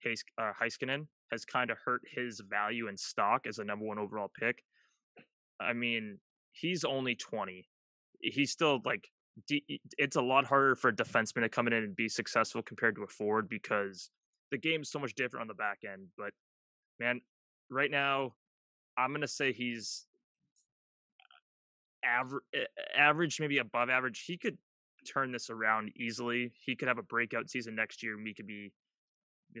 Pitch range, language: 110-130 Hz, English